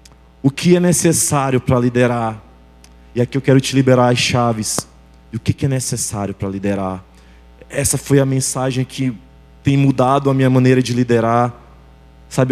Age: 20-39